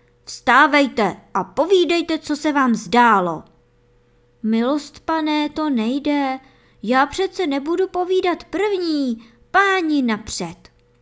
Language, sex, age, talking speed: Czech, male, 20-39, 100 wpm